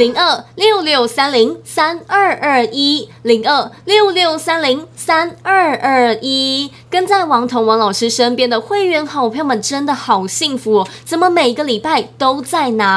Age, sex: 20-39, female